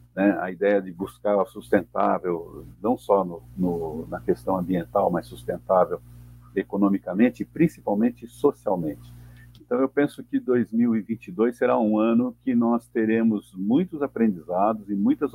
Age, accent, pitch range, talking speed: 50-69, Brazilian, 90-120 Hz, 135 wpm